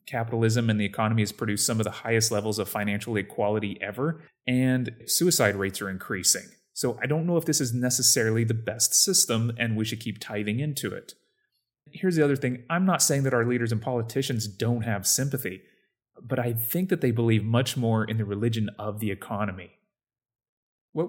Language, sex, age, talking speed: English, male, 30-49, 195 wpm